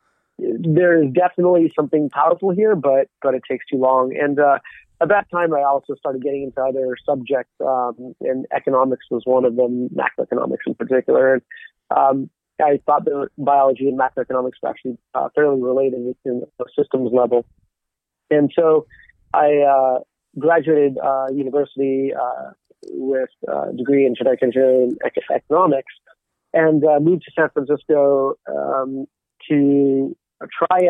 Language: English